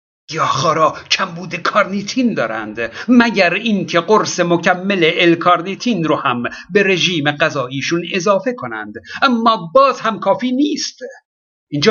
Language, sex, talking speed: Persian, male, 110 wpm